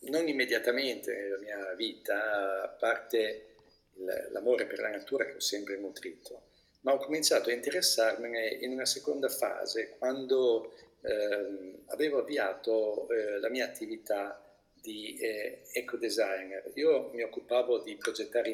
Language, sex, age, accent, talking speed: Italian, male, 50-69, native, 130 wpm